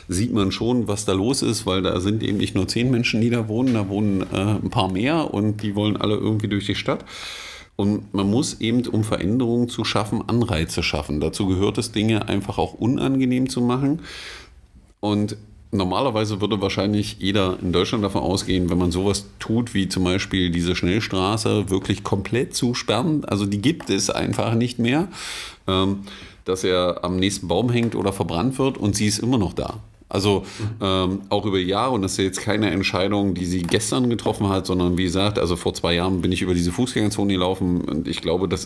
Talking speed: 200 wpm